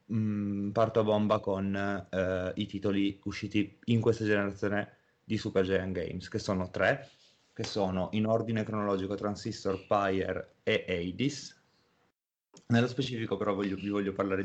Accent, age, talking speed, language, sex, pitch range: native, 30-49, 135 wpm, Italian, male, 95-115 Hz